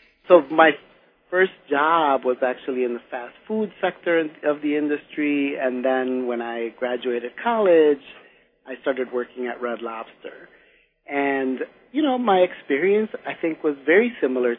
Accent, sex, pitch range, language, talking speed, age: American, male, 120-150 Hz, English, 150 wpm, 40-59